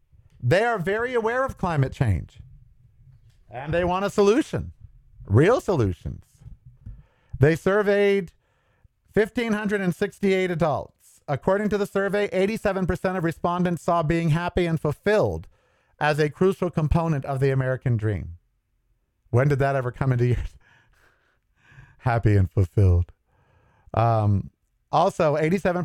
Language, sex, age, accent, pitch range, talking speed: English, male, 50-69, American, 110-165 Hz, 120 wpm